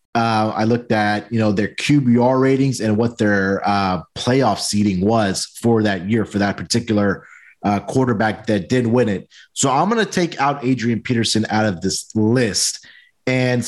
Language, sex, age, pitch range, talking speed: English, male, 30-49, 105-130 Hz, 180 wpm